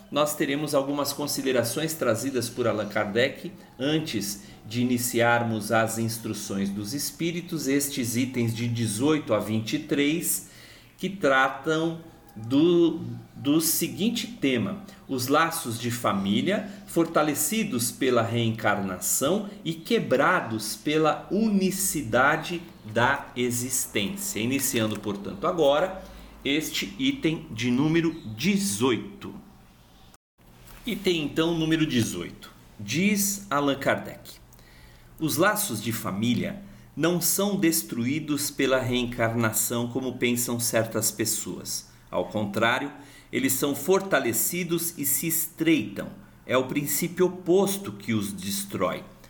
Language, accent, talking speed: Portuguese, Brazilian, 105 wpm